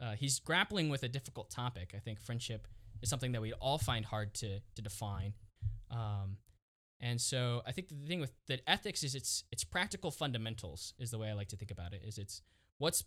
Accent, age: American, 10-29